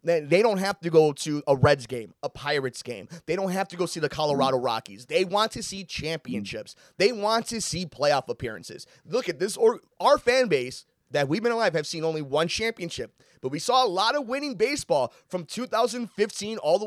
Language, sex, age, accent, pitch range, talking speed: English, male, 30-49, American, 160-225 Hz, 210 wpm